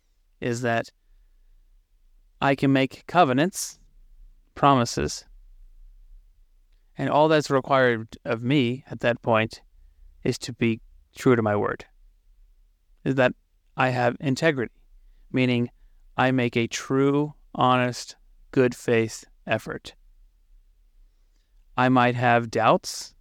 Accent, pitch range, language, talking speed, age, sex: American, 85-130 Hz, English, 105 wpm, 30-49, male